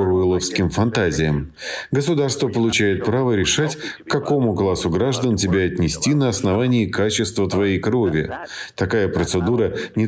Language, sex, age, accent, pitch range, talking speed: Russian, male, 50-69, native, 90-120 Hz, 120 wpm